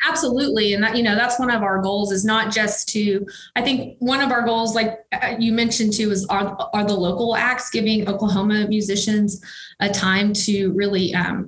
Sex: female